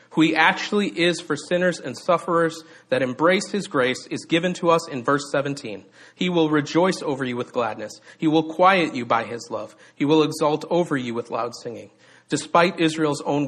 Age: 40-59